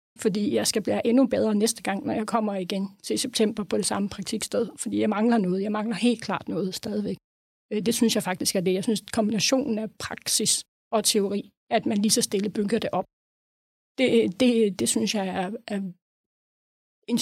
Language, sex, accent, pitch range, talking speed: Danish, female, native, 200-230 Hz, 200 wpm